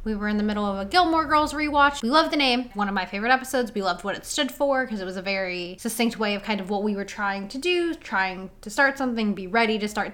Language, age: English, 10-29